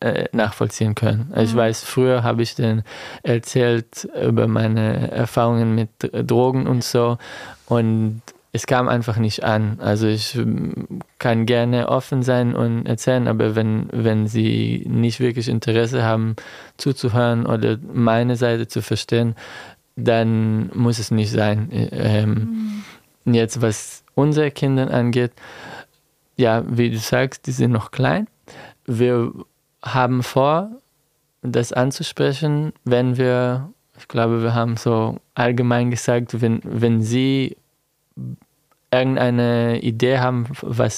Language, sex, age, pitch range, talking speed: German, male, 20-39, 110-125 Hz, 120 wpm